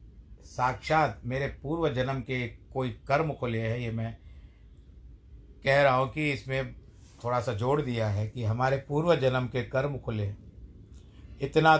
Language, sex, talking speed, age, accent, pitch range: Hindi, male, 145 wpm, 50-69, native, 110-135 Hz